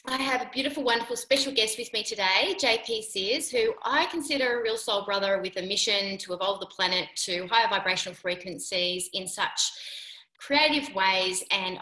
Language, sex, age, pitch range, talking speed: English, female, 30-49, 180-230 Hz, 180 wpm